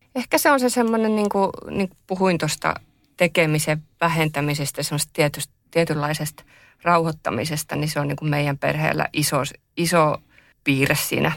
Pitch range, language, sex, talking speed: 145-175 Hz, Finnish, female, 135 wpm